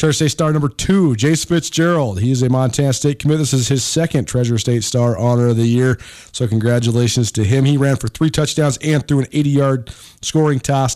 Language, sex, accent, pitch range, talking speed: English, male, American, 120-150 Hz, 215 wpm